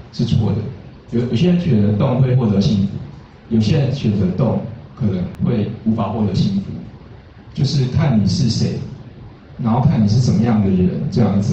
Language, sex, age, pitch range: Chinese, male, 20-39, 105-125 Hz